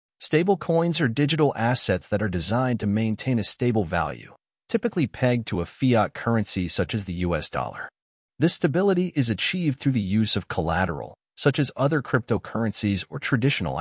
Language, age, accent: English, 30-49, American